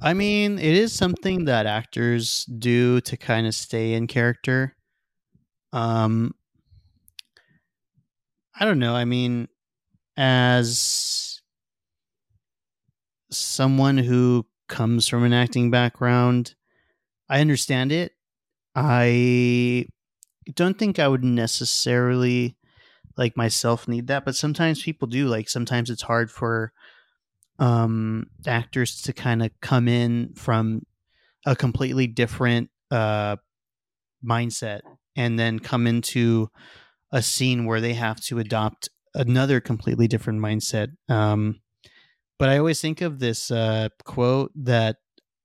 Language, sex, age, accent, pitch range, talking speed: English, male, 30-49, American, 115-130 Hz, 115 wpm